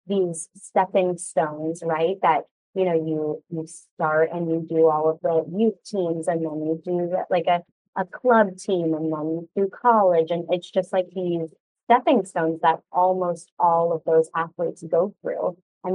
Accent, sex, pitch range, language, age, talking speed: American, female, 165-195 Hz, English, 30-49, 175 wpm